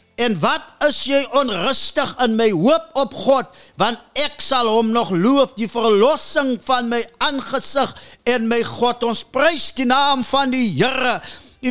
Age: 50-69